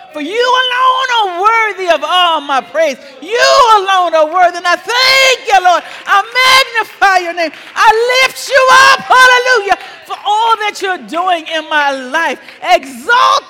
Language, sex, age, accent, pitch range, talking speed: English, female, 40-59, American, 270-405 Hz, 160 wpm